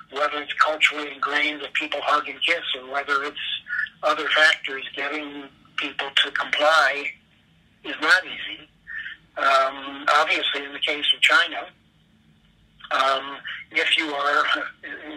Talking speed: 130 wpm